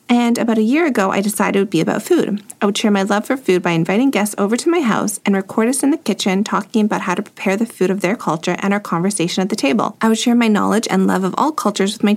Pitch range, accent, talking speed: 190-230 Hz, American, 295 wpm